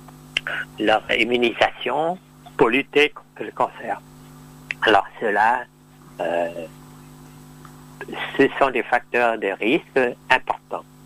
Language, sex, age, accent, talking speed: French, male, 60-79, French, 90 wpm